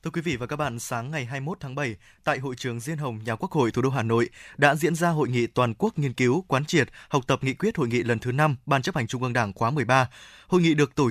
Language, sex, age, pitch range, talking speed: Vietnamese, male, 20-39, 130-170 Hz, 295 wpm